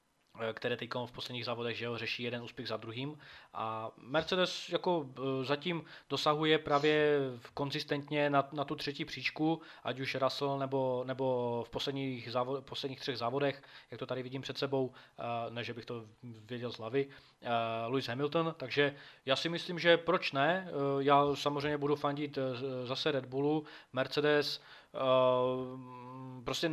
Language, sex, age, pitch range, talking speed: Czech, male, 20-39, 125-145 Hz, 150 wpm